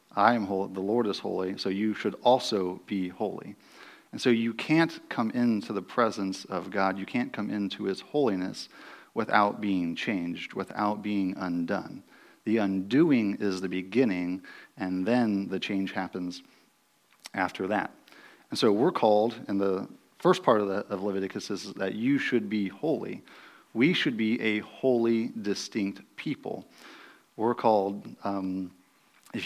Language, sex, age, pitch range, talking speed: English, male, 40-59, 95-110 Hz, 155 wpm